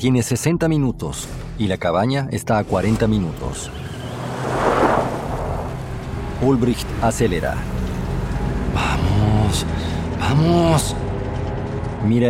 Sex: male